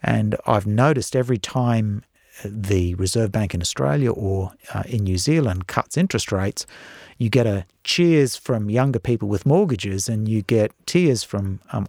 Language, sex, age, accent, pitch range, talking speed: English, male, 50-69, Australian, 100-130 Hz, 165 wpm